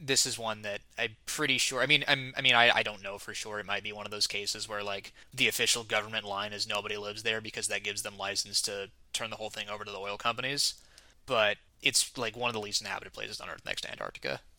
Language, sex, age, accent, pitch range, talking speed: English, male, 20-39, American, 105-120 Hz, 265 wpm